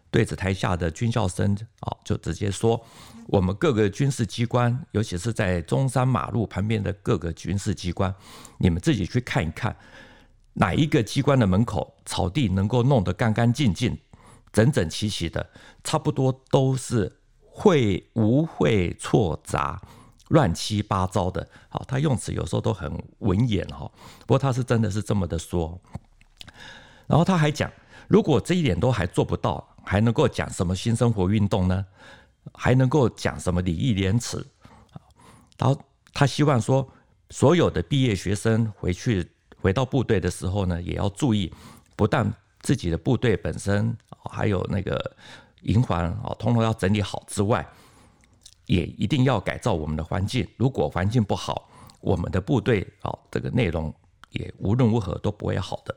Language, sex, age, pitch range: Chinese, male, 50-69, 95-120 Hz